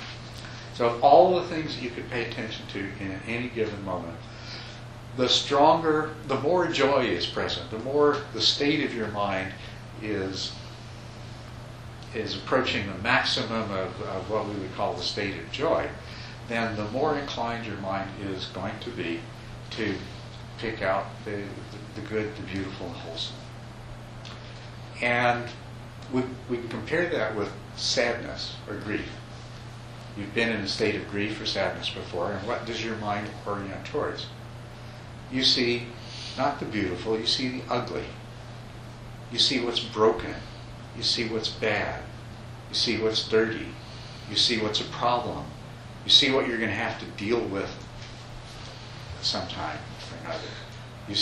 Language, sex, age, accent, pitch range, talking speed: English, male, 60-79, American, 110-120 Hz, 155 wpm